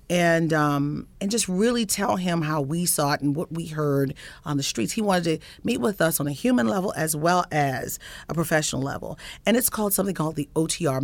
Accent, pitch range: American, 145-190 Hz